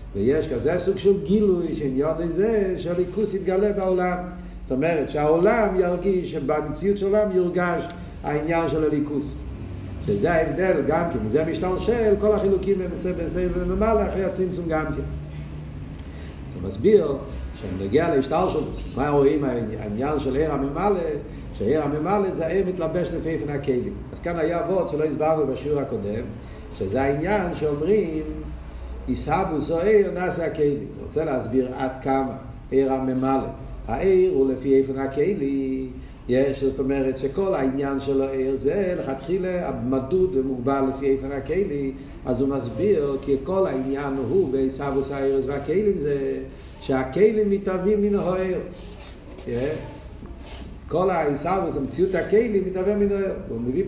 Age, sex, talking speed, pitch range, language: 50-69, male, 135 wpm, 135-185 Hz, Hebrew